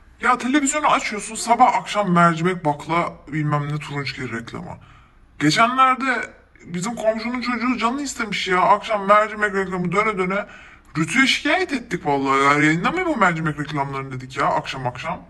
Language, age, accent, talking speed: Turkish, 20-39, native, 145 wpm